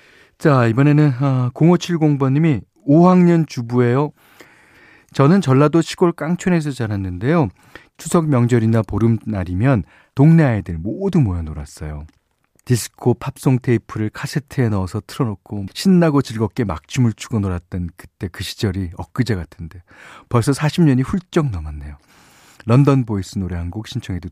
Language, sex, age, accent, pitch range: Korean, male, 40-59, native, 105-160 Hz